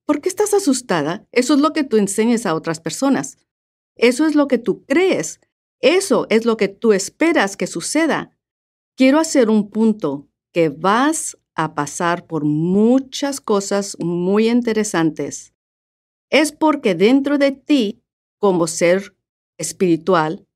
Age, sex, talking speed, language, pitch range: 50-69, female, 140 wpm, Spanish, 170-245 Hz